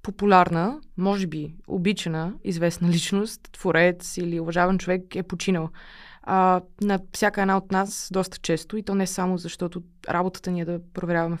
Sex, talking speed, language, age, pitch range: female, 155 wpm, Bulgarian, 20-39, 185-230 Hz